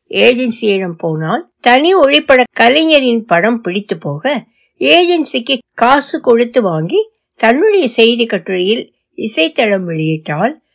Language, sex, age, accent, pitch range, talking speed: Tamil, female, 60-79, native, 185-275 Hz, 95 wpm